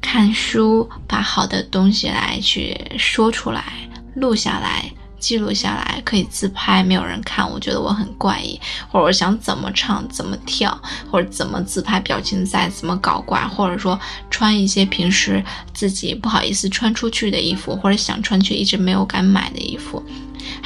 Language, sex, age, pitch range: Chinese, female, 10-29, 180-215 Hz